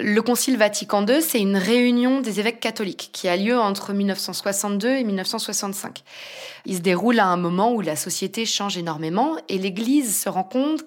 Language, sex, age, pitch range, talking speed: French, female, 20-39, 180-235 Hz, 180 wpm